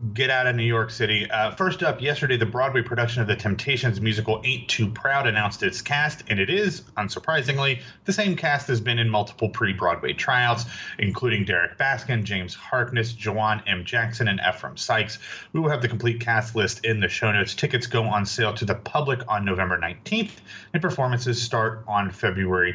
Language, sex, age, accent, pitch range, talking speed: English, male, 30-49, American, 105-135 Hz, 195 wpm